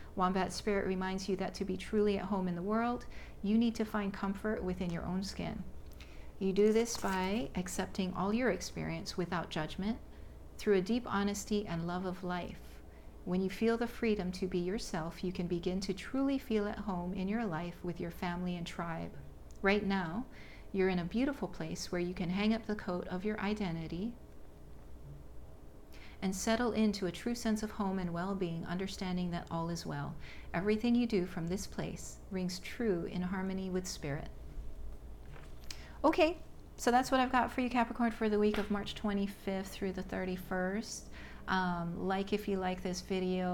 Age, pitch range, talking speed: 40-59, 175-205 Hz, 185 wpm